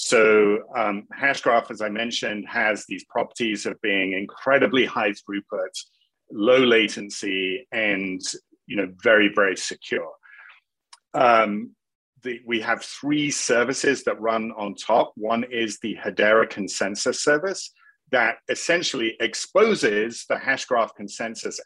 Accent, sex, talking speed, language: British, male, 120 wpm, English